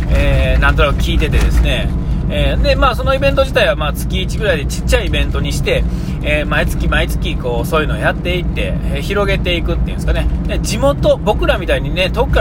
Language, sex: Japanese, male